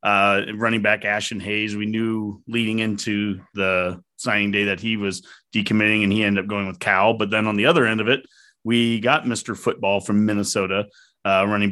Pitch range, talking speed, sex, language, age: 100-115 Hz, 200 wpm, male, English, 30-49